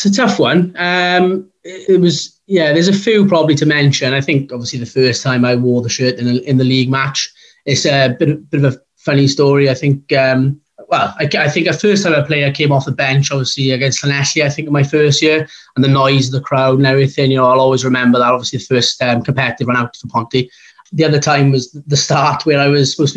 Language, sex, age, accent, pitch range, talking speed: English, male, 20-39, British, 125-145 Hz, 250 wpm